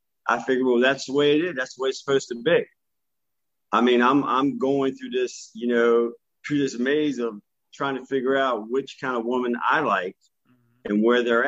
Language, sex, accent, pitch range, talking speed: English, male, American, 110-145 Hz, 215 wpm